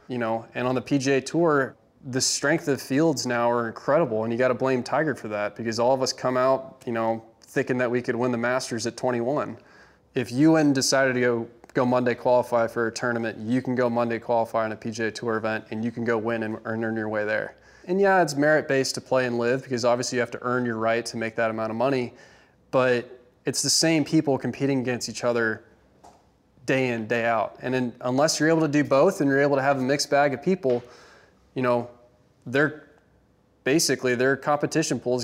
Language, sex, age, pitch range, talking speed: English, male, 20-39, 115-135 Hz, 225 wpm